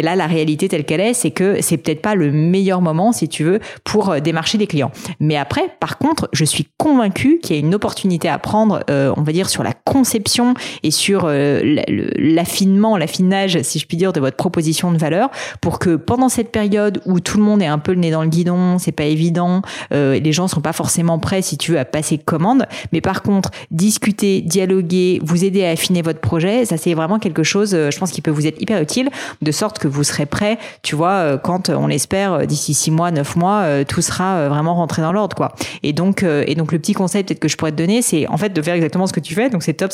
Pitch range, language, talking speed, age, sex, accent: 155-195 Hz, French, 240 wpm, 30-49, female, French